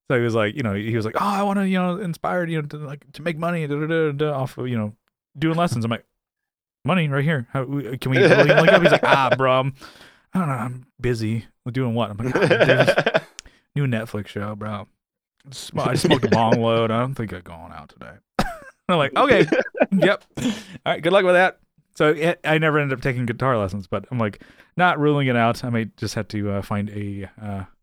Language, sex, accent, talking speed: English, male, American, 240 wpm